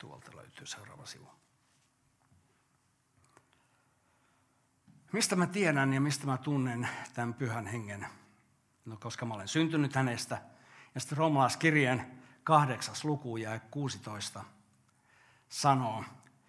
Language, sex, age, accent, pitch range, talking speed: Finnish, male, 60-79, native, 110-145 Hz, 100 wpm